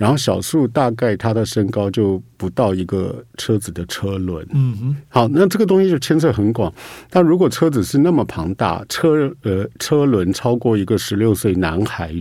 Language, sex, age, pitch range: Chinese, male, 50-69, 100-130 Hz